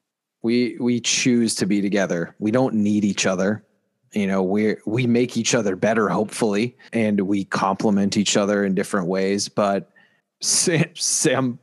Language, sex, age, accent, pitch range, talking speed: English, male, 30-49, American, 100-130 Hz, 160 wpm